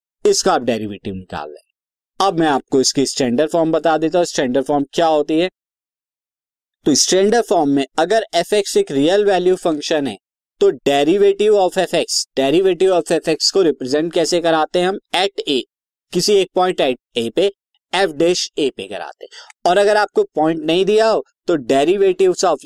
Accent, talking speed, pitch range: native, 130 wpm, 155-200 Hz